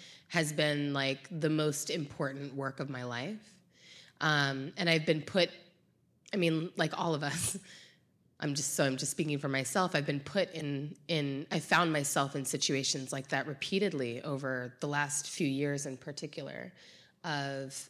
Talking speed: 170 wpm